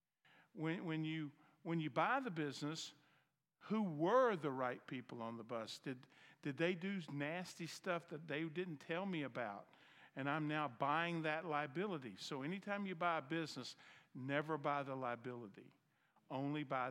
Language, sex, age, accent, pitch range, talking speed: English, male, 50-69, American, 125-160 Hz, 165 wpm